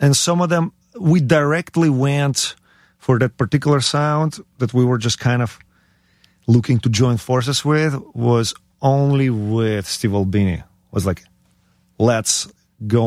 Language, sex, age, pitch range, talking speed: English, male, 40-59, 95-125 Hz, 140 wpm